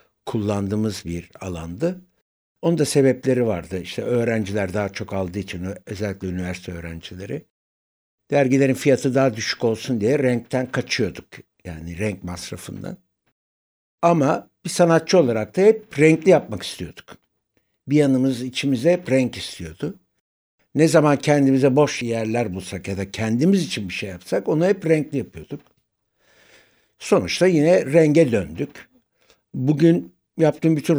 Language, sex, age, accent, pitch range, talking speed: Turkish, male, 60-79, native, 100-145 Hz, 125 wpm